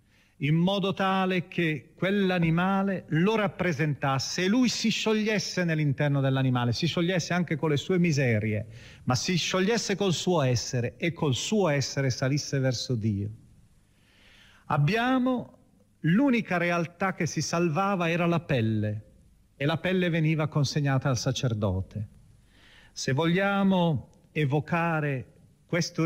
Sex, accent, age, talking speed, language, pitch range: male, native, 40-59, 120 wpm, Italian, 125-180 Hz